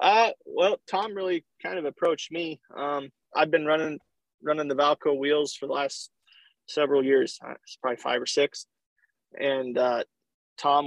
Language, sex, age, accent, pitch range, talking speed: English, male, 20-39, American, 130-145 Hz, 160 wpm